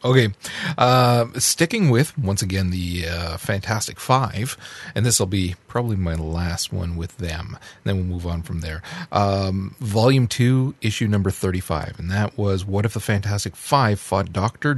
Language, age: English, 30-49